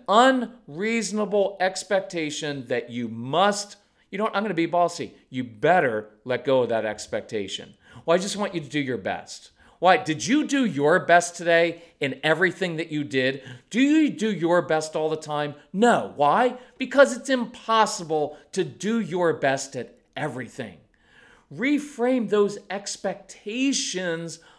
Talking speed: 150 wpm